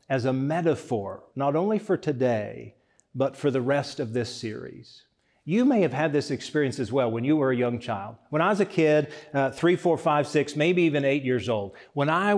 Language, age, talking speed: English, 50-69, 220 wpm